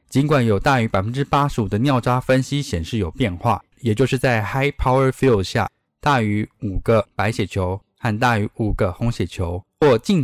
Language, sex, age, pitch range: Chinese, male, 10-29, 105-145 Hz